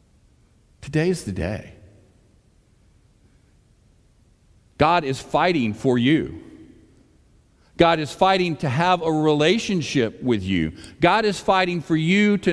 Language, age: English, 50-69